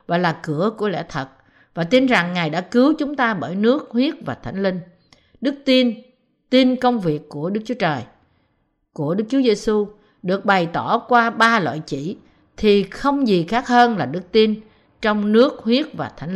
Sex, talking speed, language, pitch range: female, 195 wpm, Vietnamese, 170-250 Hz